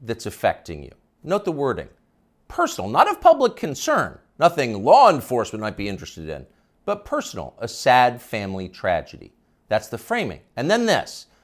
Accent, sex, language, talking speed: American, male, English, 155 wpm